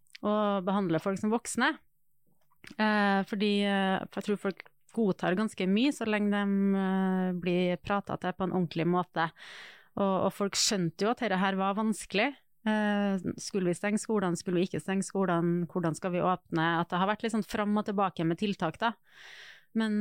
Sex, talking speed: female, 175 wpm